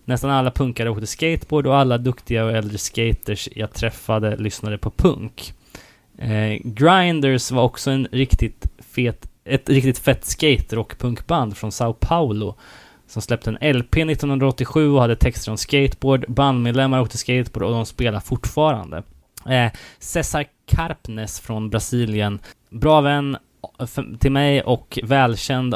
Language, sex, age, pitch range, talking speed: Swedish, male, 20-39, 110-135 Hz, 130 wpm